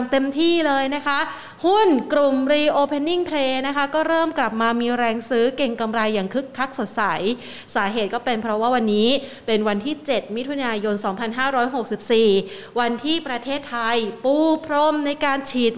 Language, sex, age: Thai, female, 30-49